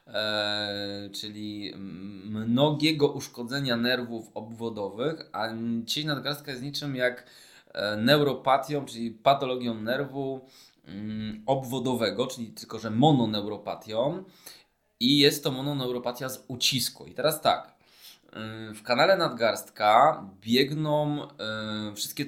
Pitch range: 110-140 Hz